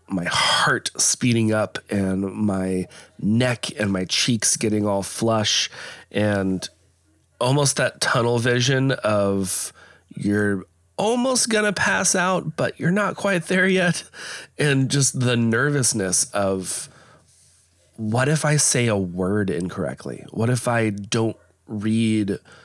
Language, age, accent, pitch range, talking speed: English, 30-49, American, 95-125 Hz, 125 wpm